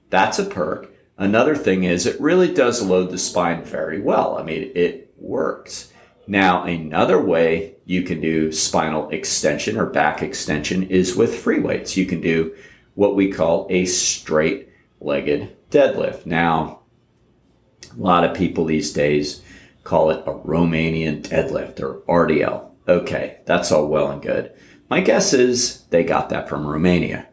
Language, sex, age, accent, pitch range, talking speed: English, male, 40-59, American, 80-90 Hz, 155 wpm